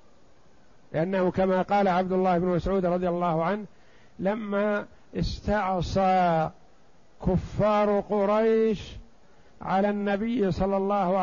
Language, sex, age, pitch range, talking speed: Arabic, male, 50-69, 180-205 Hz, 95 wpm